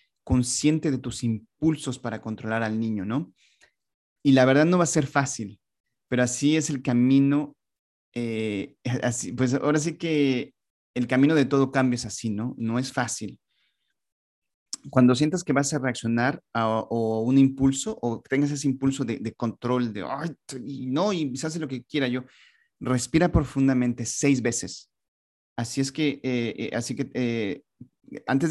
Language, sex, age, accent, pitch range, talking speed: English, male, 30-49, Mexican, 115-140 Hz, 170 wpm